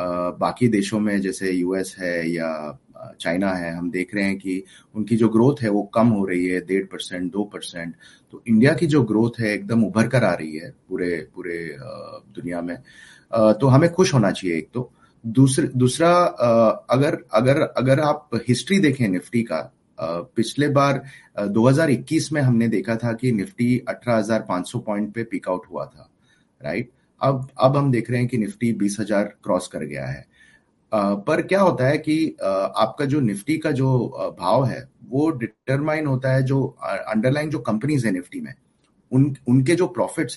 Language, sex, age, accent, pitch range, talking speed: Hindi, male, 30-49, native, 105-145 Hz, 180 wpm